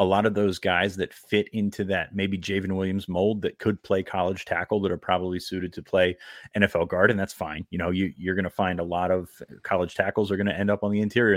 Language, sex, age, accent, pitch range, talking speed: English, male, 30-49, American, 90-100 Hz, 255 wpm